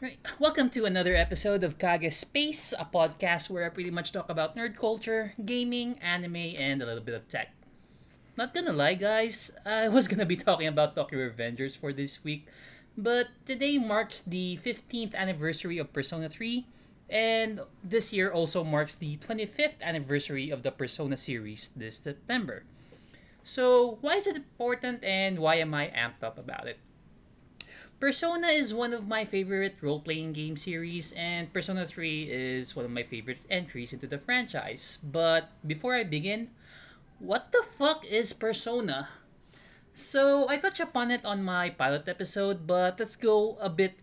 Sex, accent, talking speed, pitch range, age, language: male, native, 165 wpm, 160-230 Hz, 20-39, Filipino